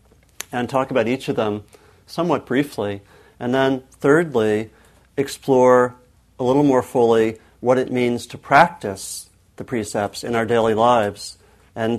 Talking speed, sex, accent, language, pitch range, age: 140 wpm, male, American, English, 105-125 Hz, 40-59